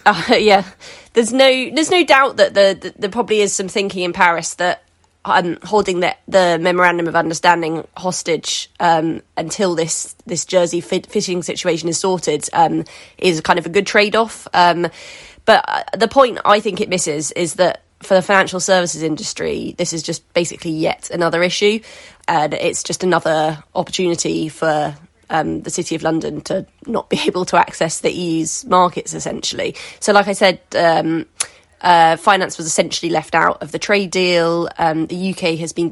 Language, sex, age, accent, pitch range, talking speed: English, female, 20-39, British, 165-190 Hz, 180 wpm